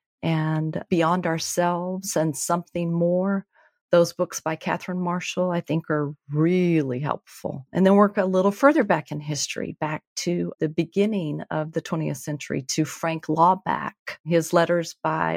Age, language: 40-59, English